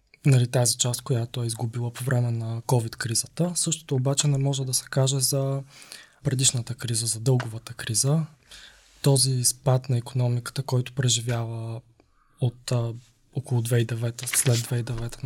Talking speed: 130 wpm